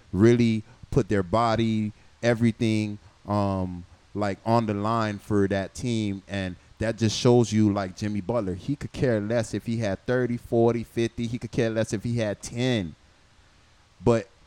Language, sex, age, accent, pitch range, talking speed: English, male, 20-39, American, 105-125 Hz, 165 wpm